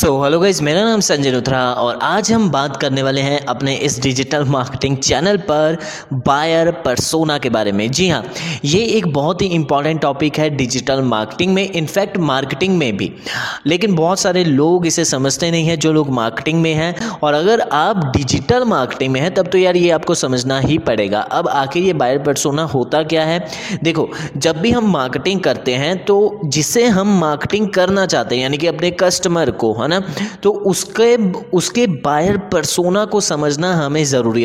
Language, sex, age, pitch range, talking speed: Hindi, male, 20-39, 145-185 Hz, 185 wpm